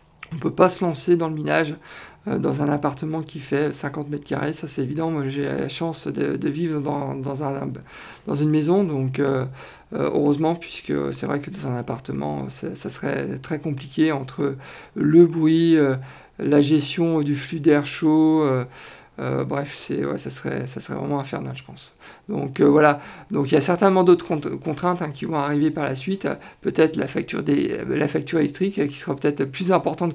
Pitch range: 145-170 Hz